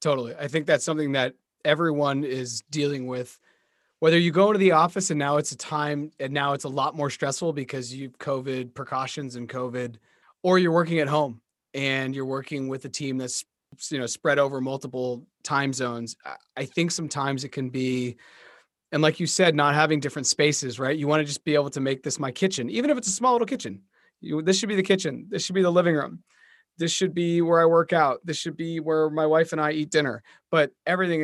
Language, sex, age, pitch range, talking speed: English, male, 30-49, 135-165 Hz, 225 wpm